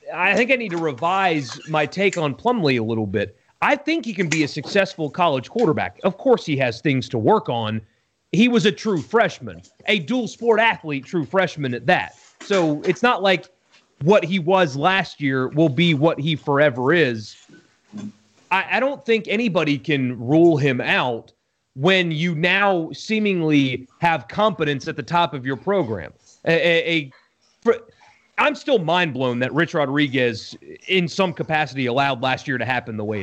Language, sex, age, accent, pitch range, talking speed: English, male, 30-49, American, 140-195 Hz, 175 wpm